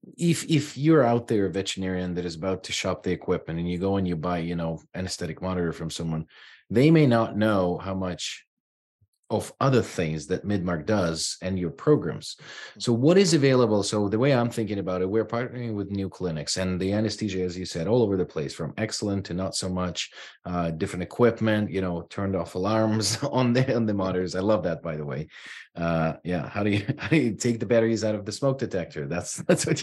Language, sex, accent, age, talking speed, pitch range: English, male, Canadian, 30-49, 225 wpm, 90-115 Hz